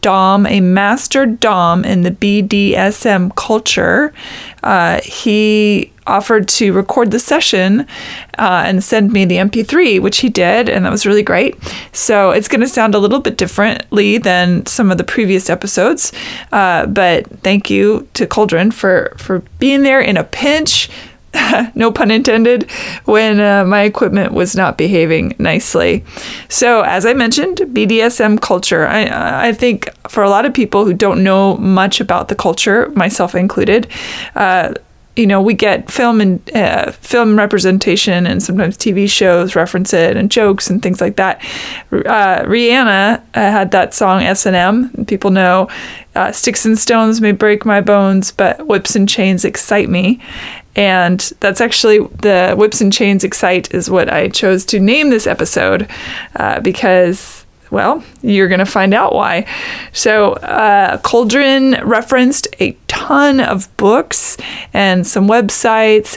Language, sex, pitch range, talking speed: English, female, 190-230 Hz, 155 wpm